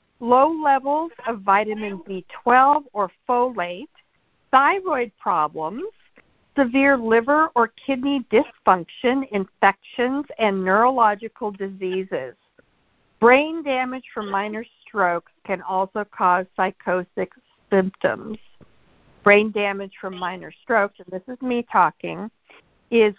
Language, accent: English, American